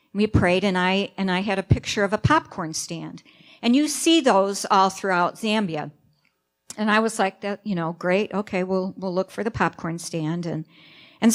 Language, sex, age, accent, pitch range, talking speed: English, female, 50-69, American, 170-225 Hz, 200 wpm